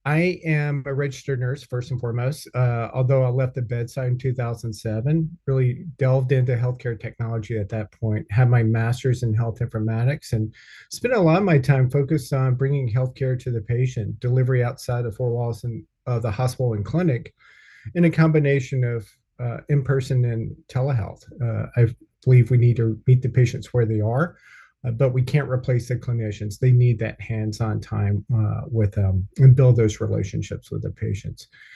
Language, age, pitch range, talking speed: English, 40-59, 115-135 Hz, 180 wpm